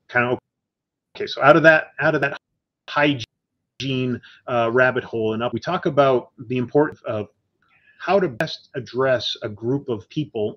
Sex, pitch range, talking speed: male, 115-145 Hz, 170 wpm